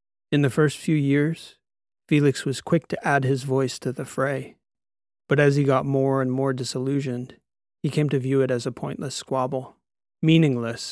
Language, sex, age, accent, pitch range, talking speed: English, male, 30-49, American, 130-145 Hz, 180 wpm